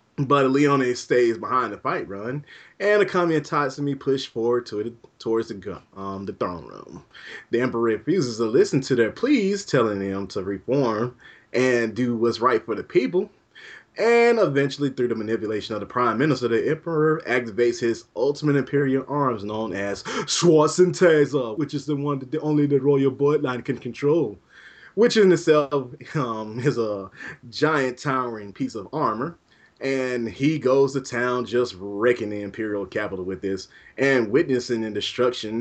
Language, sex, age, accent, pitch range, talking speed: English, male, 20-39, American, 110-145 Hz, 170 wpm